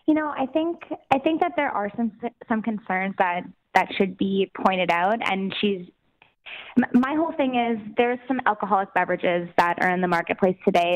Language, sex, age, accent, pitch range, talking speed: English, female, 20-39, American, 190-210 Hz, 185 wpm